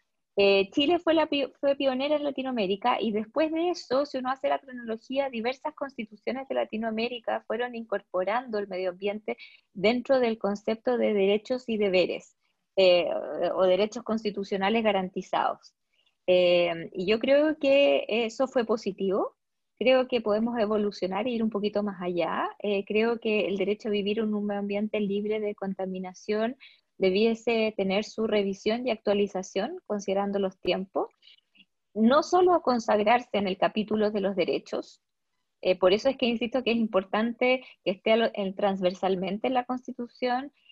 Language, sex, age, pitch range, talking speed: Spanish, female, 20-39, 190-240 Hz, 155 wpm